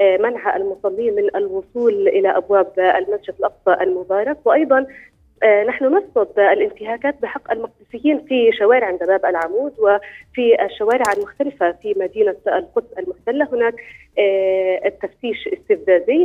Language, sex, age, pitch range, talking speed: Arabic, female, 30-49, 200-275 Hz, 105 wpm